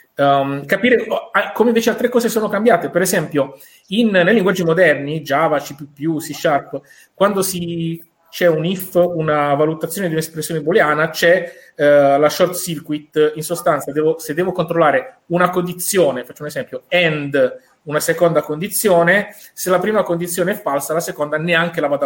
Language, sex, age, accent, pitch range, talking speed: Italian, male, 30-49, native, 145-180 Hz, 160 wpm